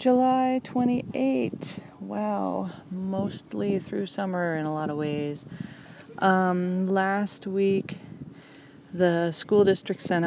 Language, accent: English, American